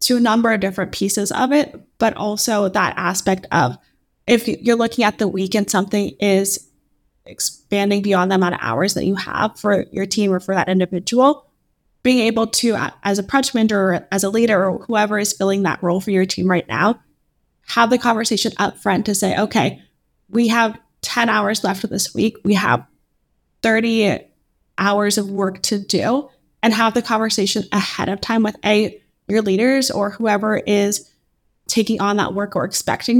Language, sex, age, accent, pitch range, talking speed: English, female, 20-39, American, 195-225 Hz, 190 wpm